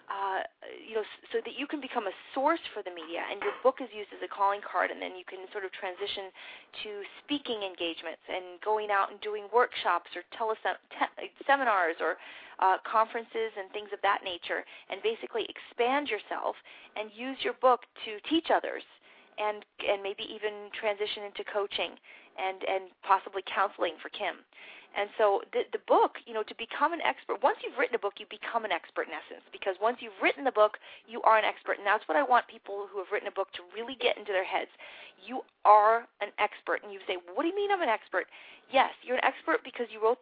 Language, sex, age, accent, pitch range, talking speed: English, female, 30-49, American, 200-275 Hz, 215 wpm